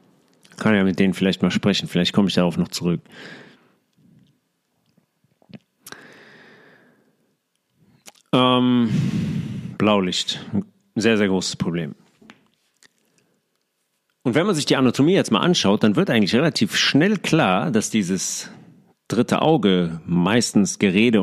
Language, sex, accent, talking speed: German, male, German, 115 wpm